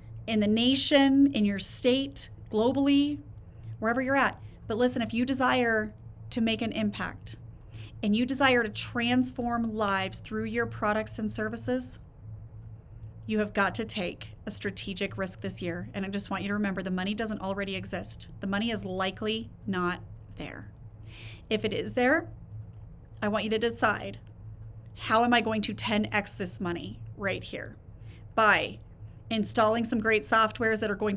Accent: American